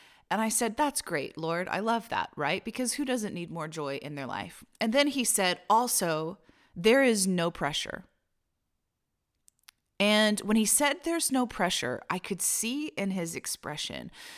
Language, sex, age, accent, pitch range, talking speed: English, female, 30-49, American, 160-225 Hz, 170 wpm